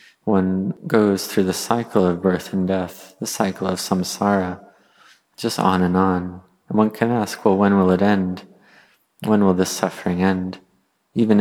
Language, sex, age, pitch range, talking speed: English, male, 30-49, 90-100 Hz, 170 wpm